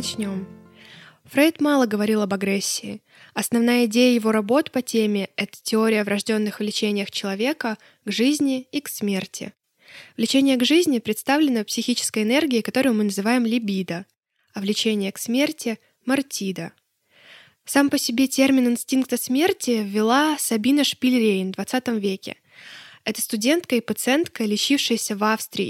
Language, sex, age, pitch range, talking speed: Russian, female, 20-39, 210-260 Hz, 140 wpm